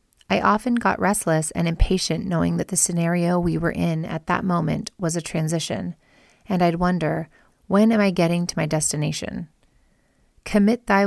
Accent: American